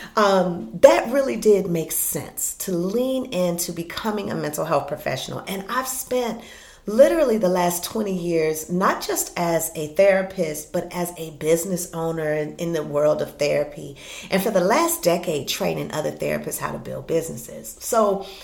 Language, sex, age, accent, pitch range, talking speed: English, female, 40-59, American, 165-220 Hz, 165 wpm